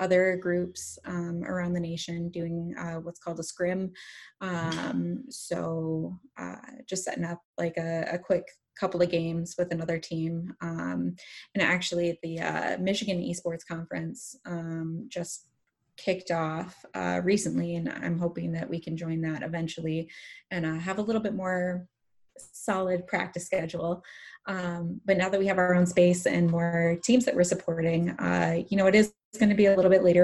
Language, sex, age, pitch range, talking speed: English, female, 20-39, 165-185 Hz, 175 wpm